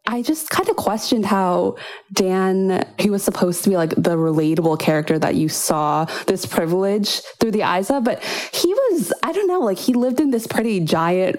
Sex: female